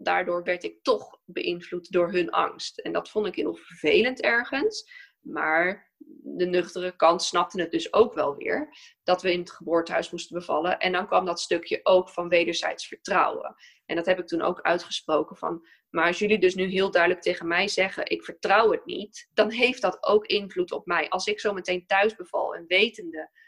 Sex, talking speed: female, 200 wpm